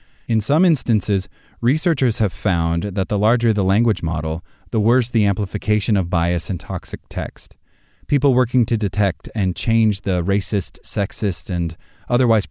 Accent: American